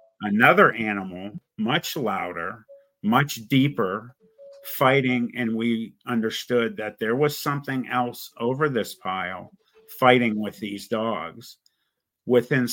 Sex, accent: male, American